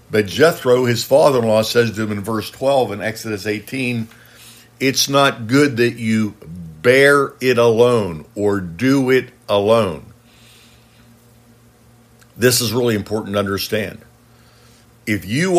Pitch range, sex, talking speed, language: 110-130 Hz, male, 125 wpm, English